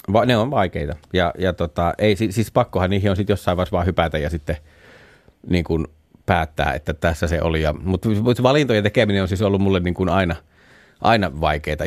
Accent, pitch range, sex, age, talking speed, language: native, 85-105 Hz, male, 30-49, 205 wpm, Finnish